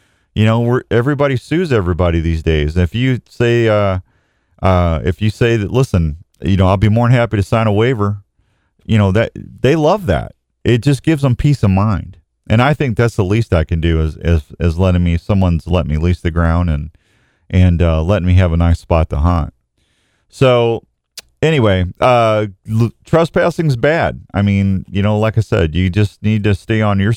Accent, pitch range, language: American, 90-135 Hz, English